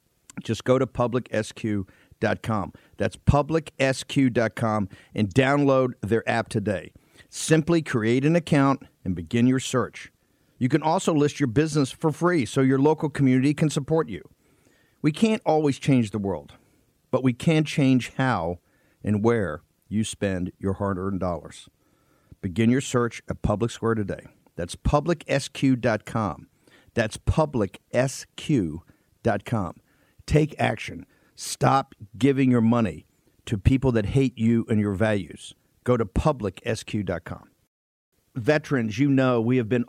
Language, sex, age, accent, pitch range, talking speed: English, male, 50-69, American, 105-130 Hz, 130 wpm